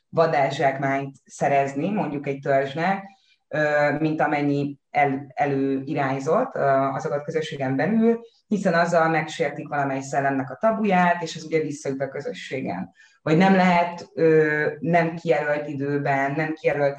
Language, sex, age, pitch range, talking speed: Hungarian, female, 20-39, 140-170 Hz, 115 wpm